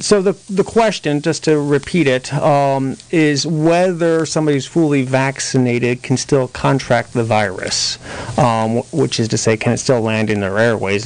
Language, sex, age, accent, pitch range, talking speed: English, male, 40-59, American, 105-130 Hz, 175 wpm